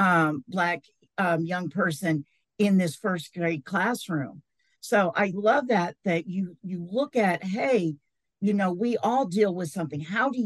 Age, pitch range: 50-69, 175-220 Hz